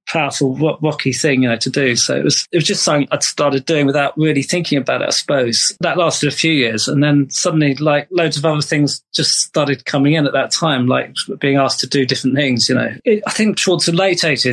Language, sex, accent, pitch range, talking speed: English, male, British, 135-160 Hz, 245 wpm